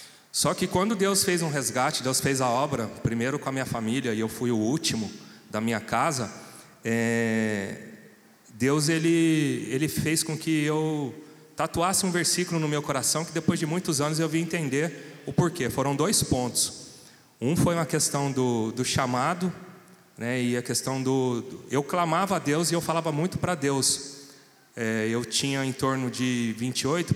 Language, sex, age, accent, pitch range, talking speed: Portuguese, male, 30-49, Brazilian, 125-155 Hz, 180 wpm